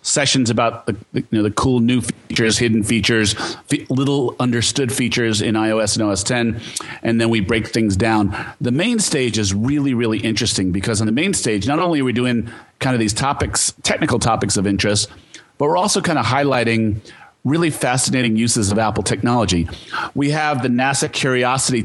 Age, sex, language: 40-59, male, English